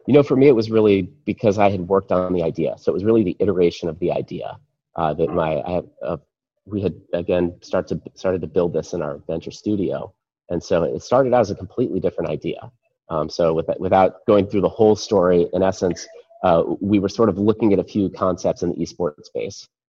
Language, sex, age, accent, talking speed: English, male, 30-49, American, 215 wpm